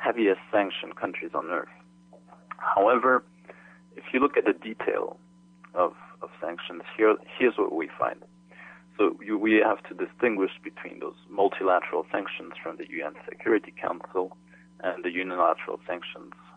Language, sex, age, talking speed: English, male, 30-49, 140 wpm